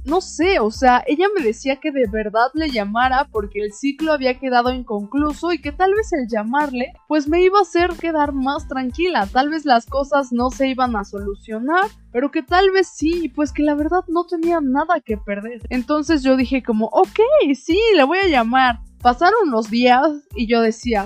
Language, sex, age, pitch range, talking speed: Spanish, female, 20-39, 235-315 Hz, 200 wpm